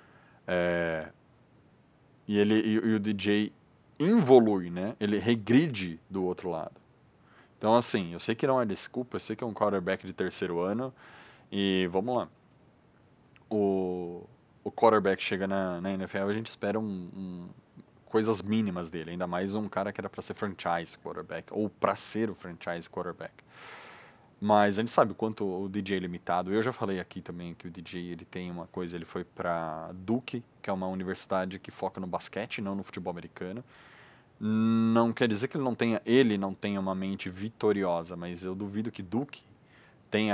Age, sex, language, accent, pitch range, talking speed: 20-39, male, Portuguese, Brazilian, 90-110 Hz, 180 wpm